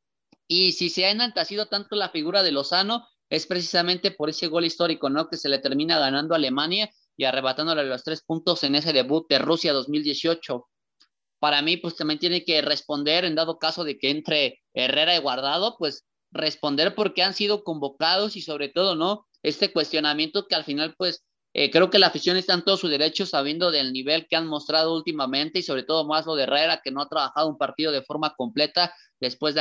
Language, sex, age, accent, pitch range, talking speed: Spanish, male, 30-49, Mexican, 145-175 Hz, 205 wpm